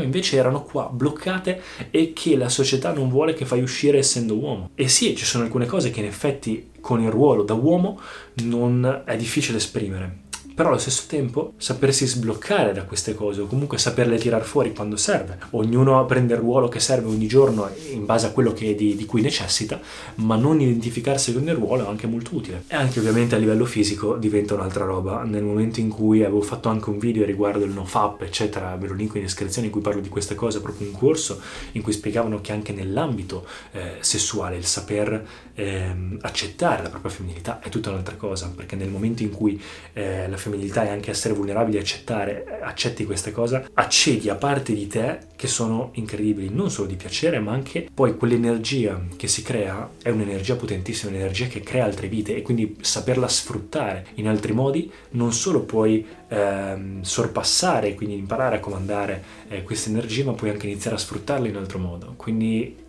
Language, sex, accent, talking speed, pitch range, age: Italian, male, native, 195 wpm, 100-125 Hz, 20-39